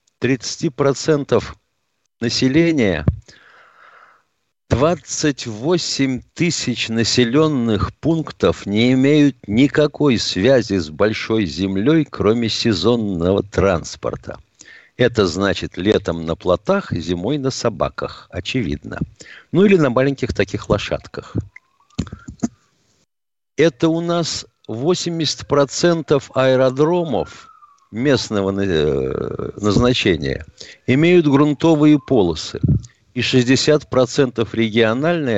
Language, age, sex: Russian, 50-69, male